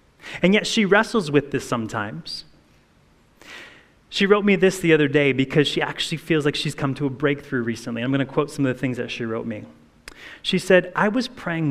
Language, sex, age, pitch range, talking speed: English, male, 30-49, 130-165 Hz, 210 wpm